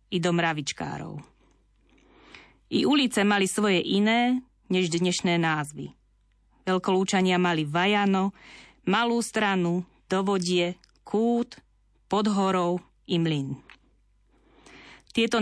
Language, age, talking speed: Slovak, 30-49, 80 wpm